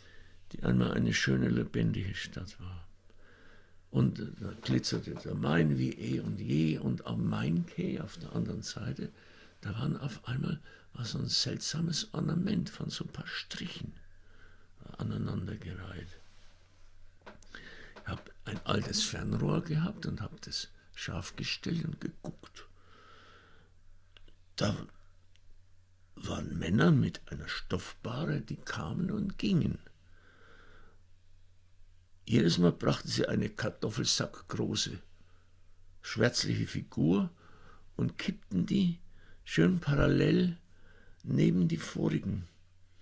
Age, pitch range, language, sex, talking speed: 60-79, 85-95 Hz, German, male, 105 wpm